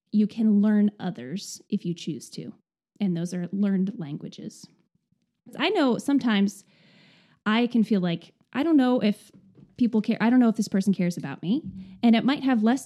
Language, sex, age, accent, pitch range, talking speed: English, female, 20-39, American, 190-230 Hz, 185 wpm